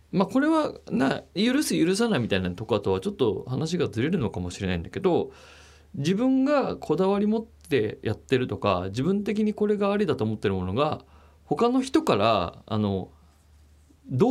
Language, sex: Japanese, male